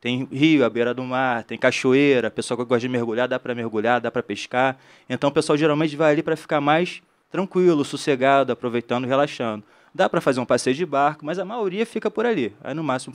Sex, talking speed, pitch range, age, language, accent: male, 220 wpm, 125-155 Hz, 20-39, Portuguese, Brazilian